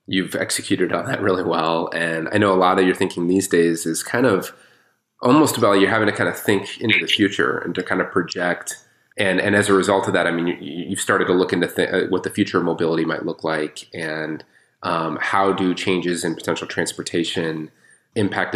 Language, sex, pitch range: English, male, 80-95 Hz